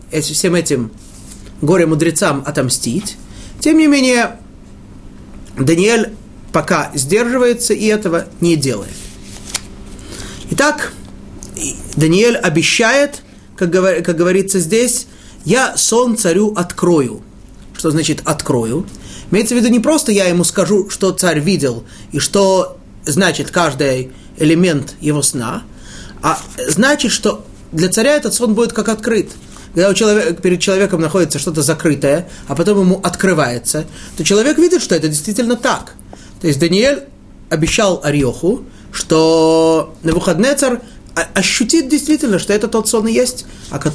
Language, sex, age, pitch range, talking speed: Russian, male, 30-49, 155-220 Hz, 125 wpm